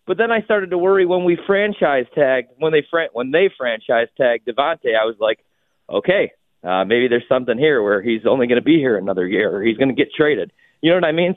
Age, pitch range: 30-49, 125-175 Hz